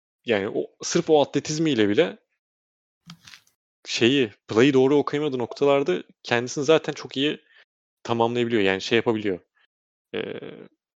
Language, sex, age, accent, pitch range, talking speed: Turkish, male, 30-49, native, 115-145 Hz, 105 wpm